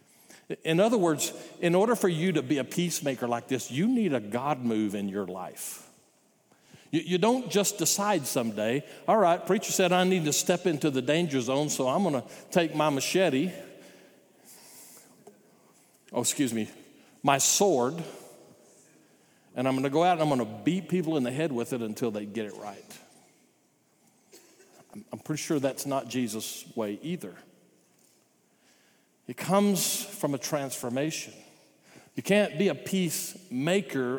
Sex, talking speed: male, 160 wpm